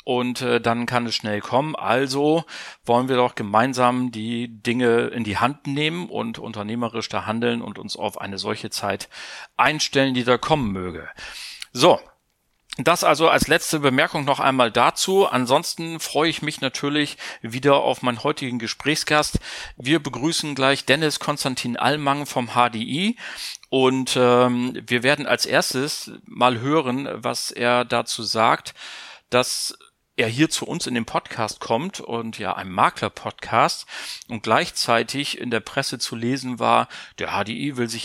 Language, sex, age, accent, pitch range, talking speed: German, male, 40-59, German, 115-140 Hz, 150 wpm